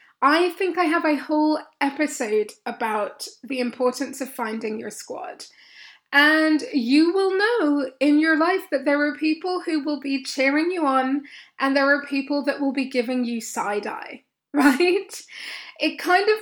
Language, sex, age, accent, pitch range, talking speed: English, female, 10-29, British, 270-315 Hz, 170 wpm